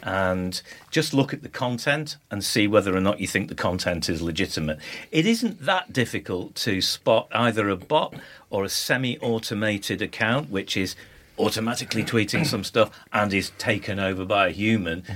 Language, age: English, 40-59